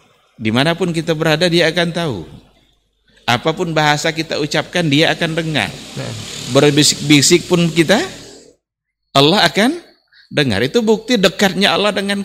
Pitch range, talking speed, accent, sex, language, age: 115-170 Hz, 120 wpm, native, male, Indonesian, 50-69